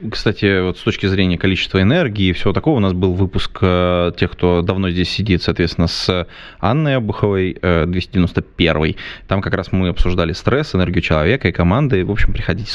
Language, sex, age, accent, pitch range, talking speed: Russian, male, 20-39, native, 95-115 Hz, 175 wpm